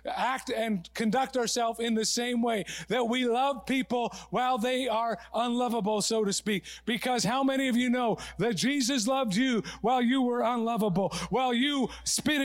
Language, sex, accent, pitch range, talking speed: English, male, American, 210-255 Hz, 175 wpm